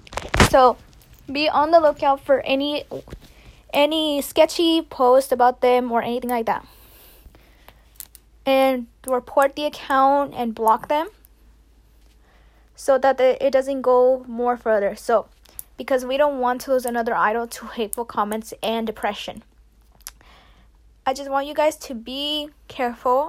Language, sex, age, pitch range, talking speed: English, female, 10-29, 240-280 Hz, 135 wpm